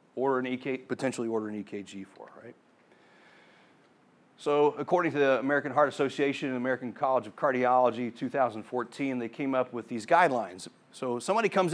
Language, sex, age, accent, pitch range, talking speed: English, male, 40-59, American, 110-140 Hz, 160 wpm